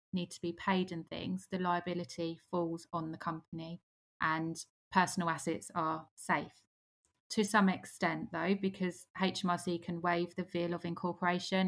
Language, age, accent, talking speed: English, 20-39, British, 150 wpm